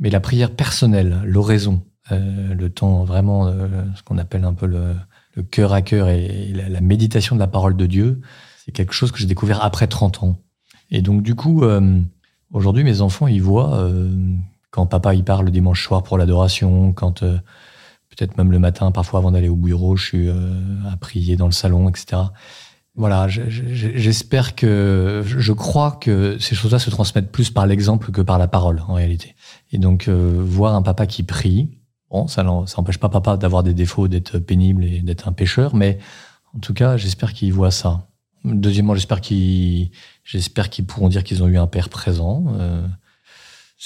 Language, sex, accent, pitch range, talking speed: French, male, French, 90-105 Hz, 195 wpm